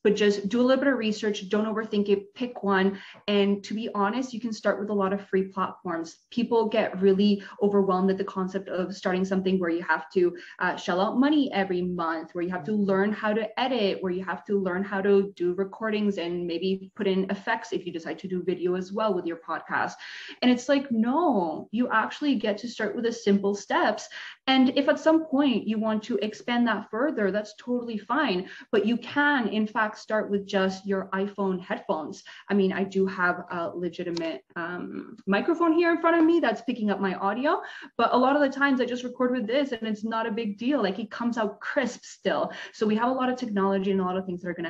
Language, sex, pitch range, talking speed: English, female, 190-230 Hz, 235 wpm